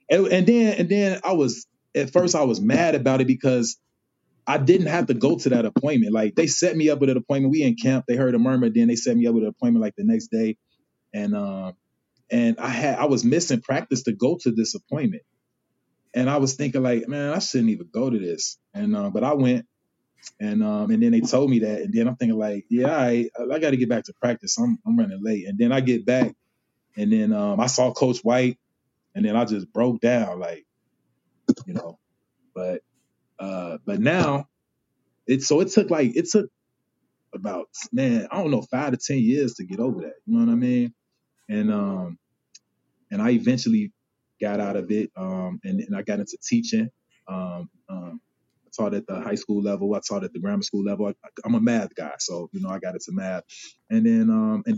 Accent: American